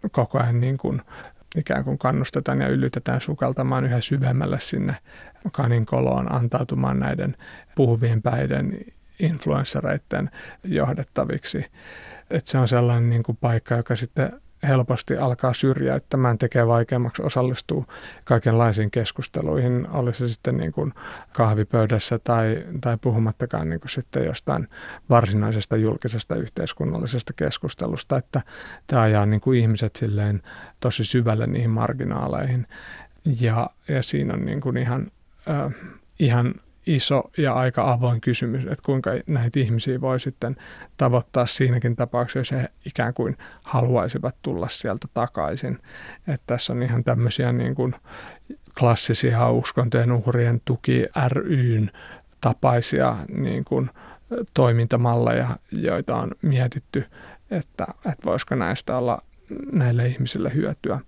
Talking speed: 120 wpm